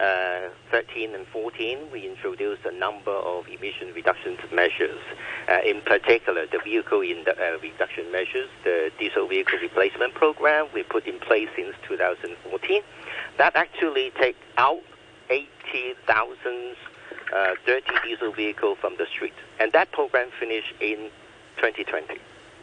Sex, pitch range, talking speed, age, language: male, 345-415 Hz, 125 wpm, 50-69, English